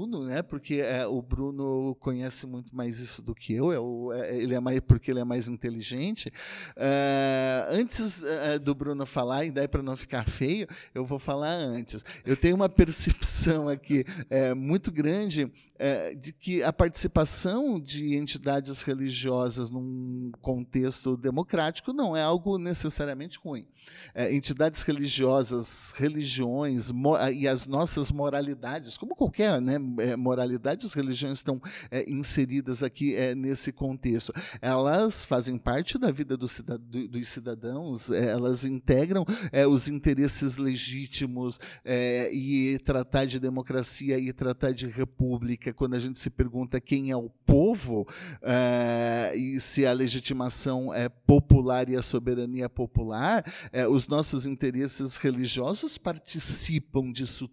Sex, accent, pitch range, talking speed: male, Brazilian, 125-150 Hz, 145 wpm